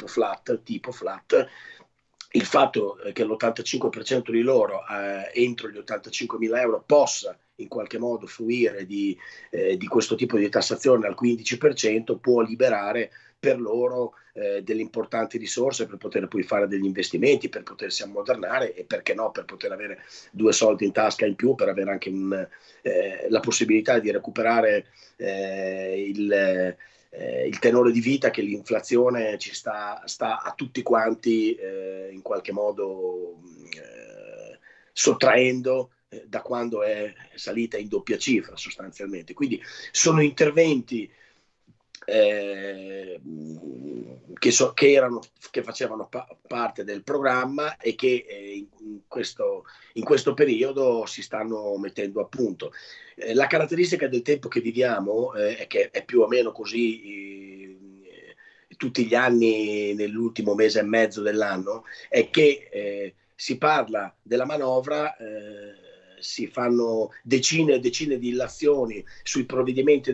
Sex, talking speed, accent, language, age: male, 135 wpm, native, Italian, 30-49